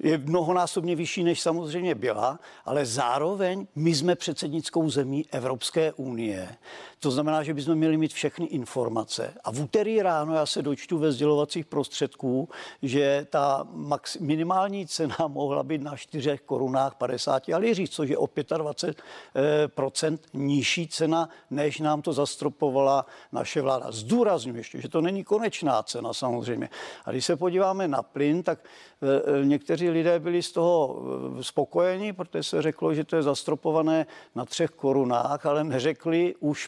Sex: male